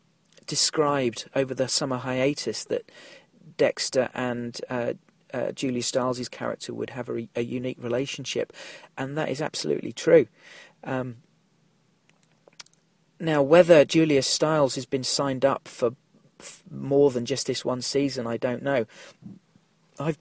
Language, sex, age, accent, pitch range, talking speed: English, male, 40-59, British, 130-175 Hz, 135 wpm